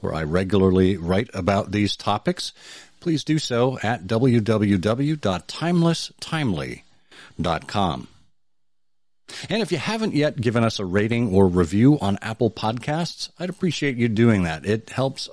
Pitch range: 95-135 Hz